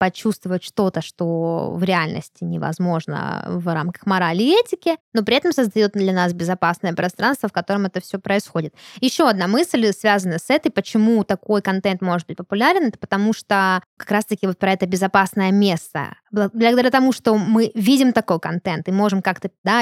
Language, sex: Russian, female